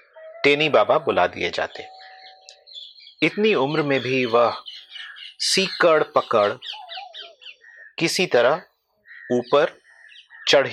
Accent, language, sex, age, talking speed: native, Hindi, male, 30-49, 90 wpm